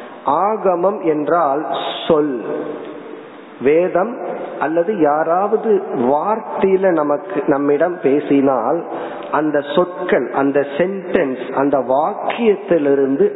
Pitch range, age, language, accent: 140-190 Hz, 50-69, Tamil, native